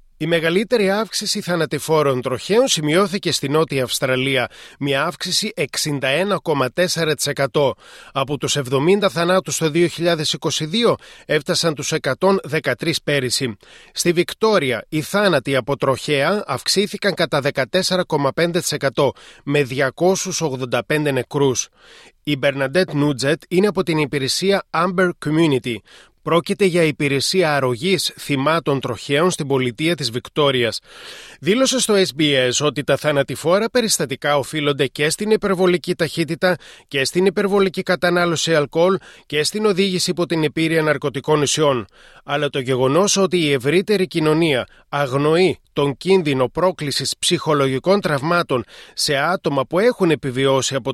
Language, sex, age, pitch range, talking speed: Greek, male, 30-49, 140-180 Hz, 115 wpm